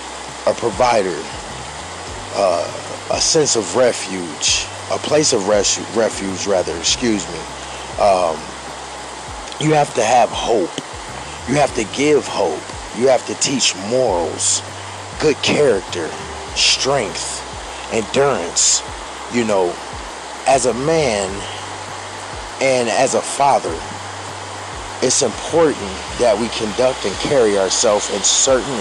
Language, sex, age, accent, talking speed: English, male, 40-59, American, 110 wpm